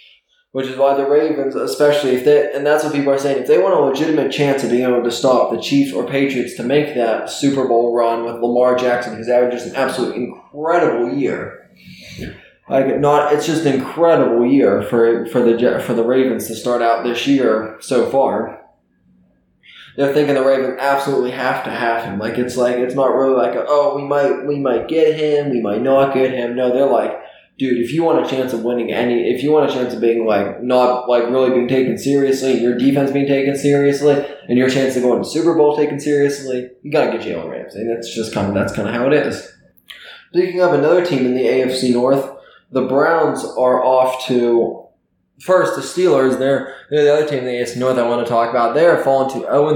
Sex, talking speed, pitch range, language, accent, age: male, 220 wpm, 120-140 Hz, English, American, 20-39